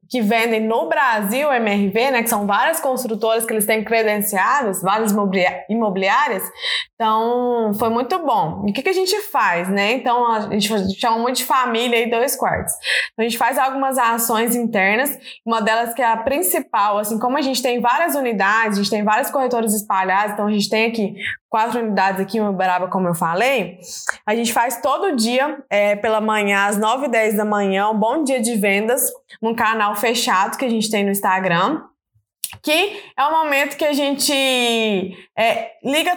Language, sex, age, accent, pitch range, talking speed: Portuguese, female, 20-39, Brazilian, 210-265 Hz, 185 wpm